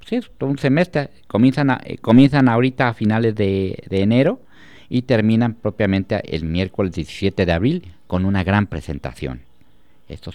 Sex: male